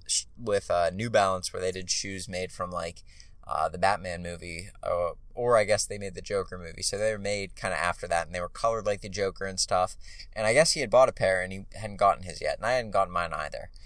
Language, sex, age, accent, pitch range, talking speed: English, male, 20-39, American, 85-105 Hz, 270 wpm